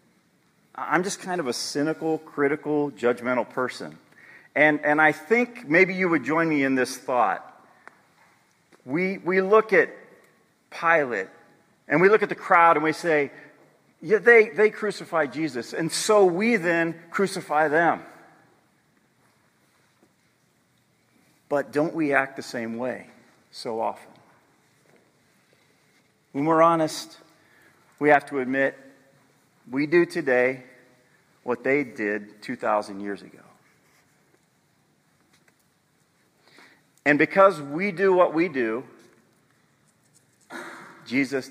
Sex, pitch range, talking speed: male, 130-170 Hz, 115 wpm